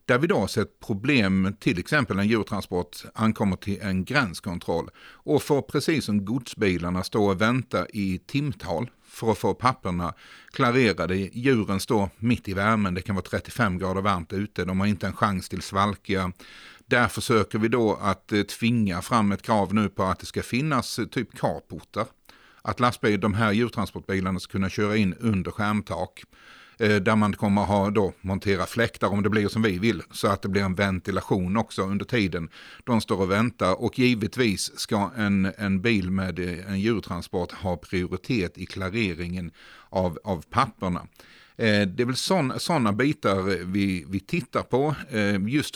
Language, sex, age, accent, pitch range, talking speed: Swedish, male, 50-69, native, 95-110 Hz, 165 wpm